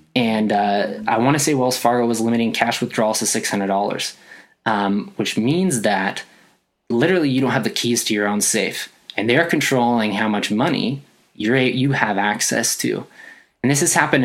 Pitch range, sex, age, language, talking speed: 105-125 Hz, male, 20-39, English, 180 wpm